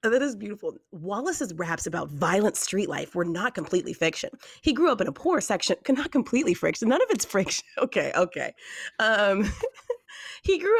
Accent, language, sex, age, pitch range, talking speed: American, English, female, 30-49, 160-255 Hz, 180 wpm